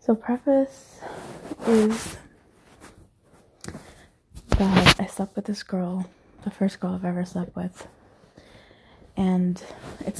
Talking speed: 105 wpm